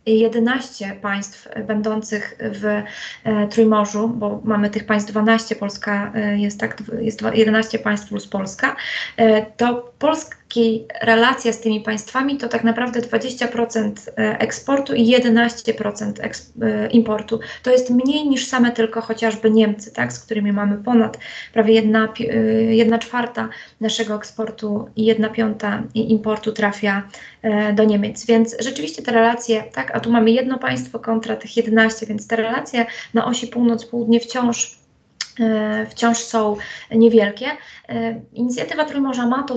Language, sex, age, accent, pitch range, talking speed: Polish, female, 20-39, native, 215-235 Hz, 130 wpm